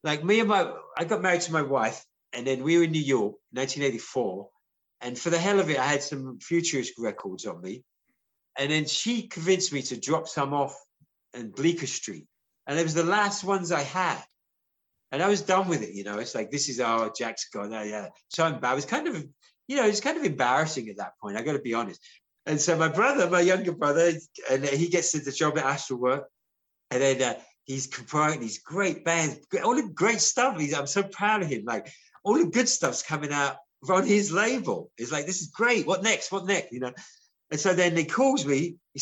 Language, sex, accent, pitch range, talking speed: English, male, British, 135-175 Hz, 230 wpm